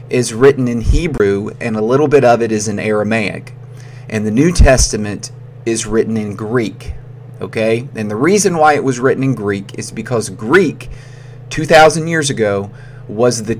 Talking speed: 170 wpm